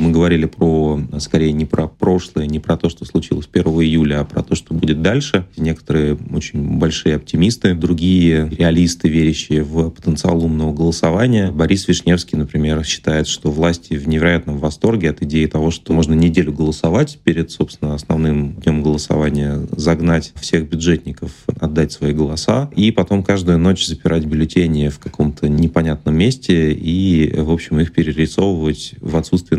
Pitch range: 75-85 Hz